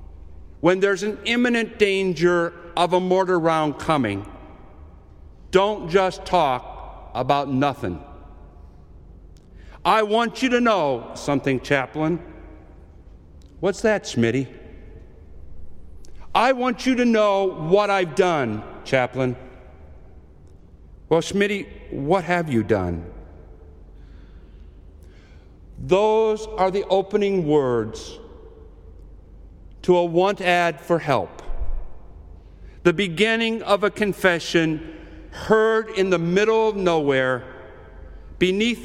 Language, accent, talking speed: English, American, 95 wpm